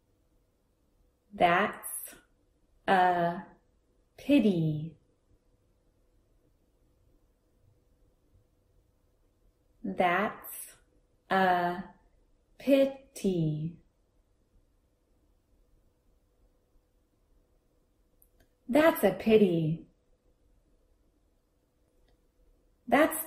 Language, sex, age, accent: Chinese, female, 30-49, American